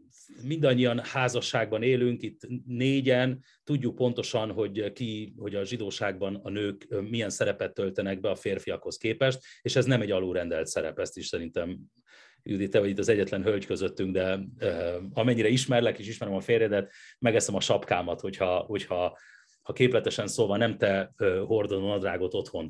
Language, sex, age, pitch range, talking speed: Hungarian, male, 30-49, 105-140 Hz, 155 wpm